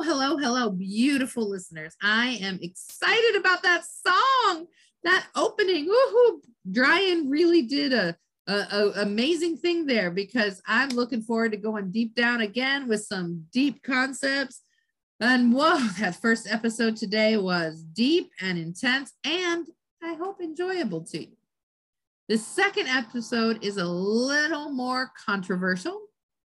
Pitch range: 200-295 Hz